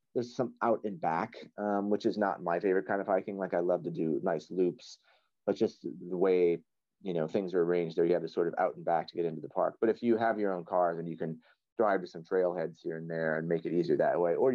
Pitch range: 80-105 Hz